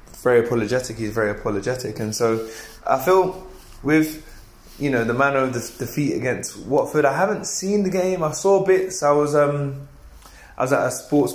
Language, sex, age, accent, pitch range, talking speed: English, male, 20-39, British, 110-140 Hz, 185 wpm